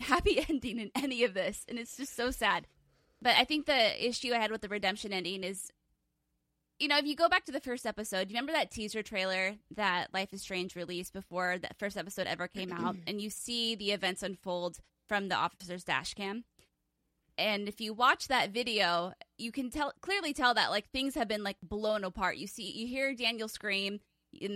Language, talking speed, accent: English, 215 wpm, American